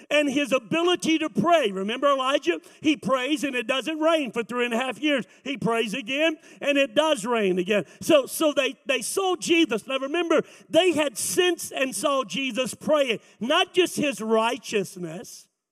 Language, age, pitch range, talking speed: English, 50-69, 230-310 Hz, 175 wpm